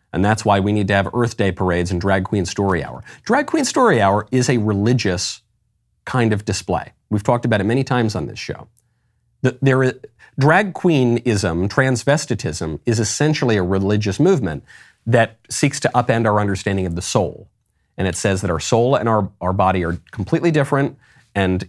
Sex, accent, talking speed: male, American, 180 wpm